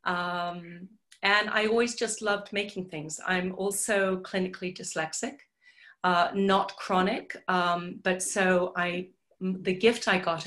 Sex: female